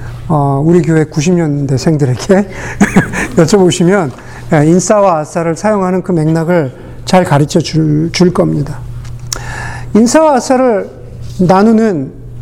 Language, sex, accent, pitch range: Korean, male, native, 125-195 Hz